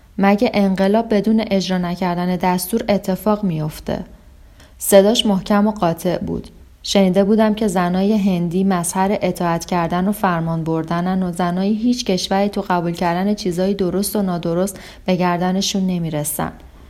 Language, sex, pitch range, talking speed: Persian, female, 175-210 Hz, 135 wpm